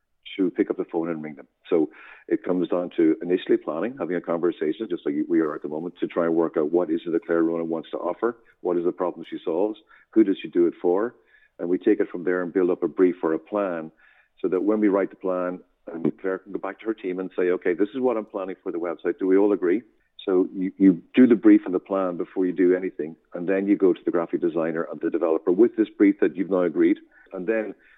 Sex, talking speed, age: male, 270 wpm, 50-69